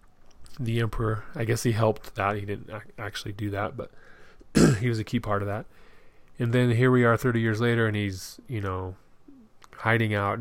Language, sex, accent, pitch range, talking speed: English, male, American, 95-115 Hz, 195 wpm